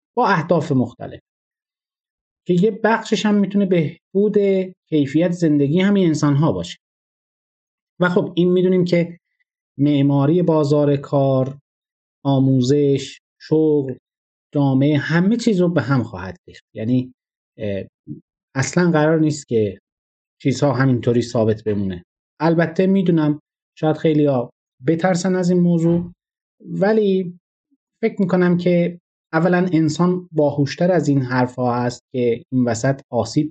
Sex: male